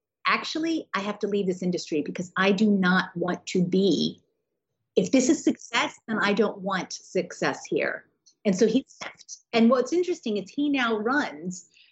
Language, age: English, 30-49